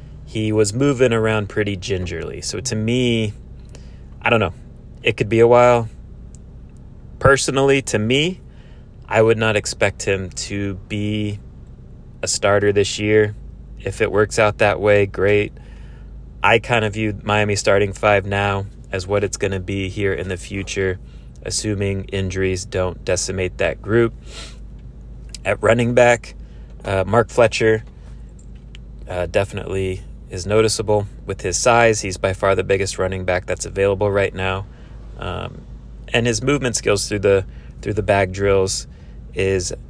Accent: American